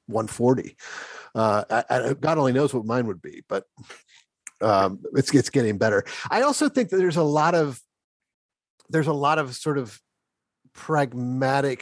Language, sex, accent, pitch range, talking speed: English, male, American, 115-150 Hz, 150 wpm